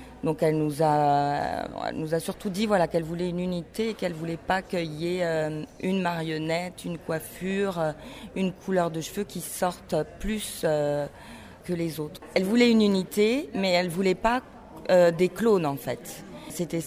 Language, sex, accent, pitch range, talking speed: French, female, French, 150-185 Hz, 180 wpm